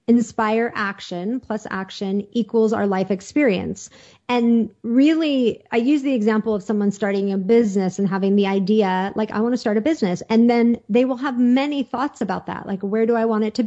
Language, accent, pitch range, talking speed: English, American, 210-250 Hz, 200 wpm